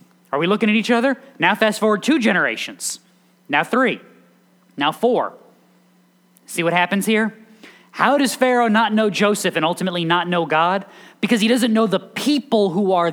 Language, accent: English, American